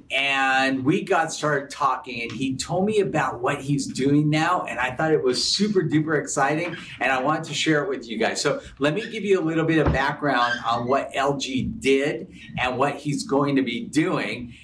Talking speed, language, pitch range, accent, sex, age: 215 wpm, English, 125-150 Hz, American, male, 50-69